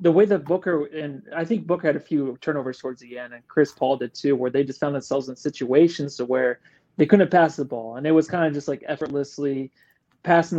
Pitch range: 130-160 Hz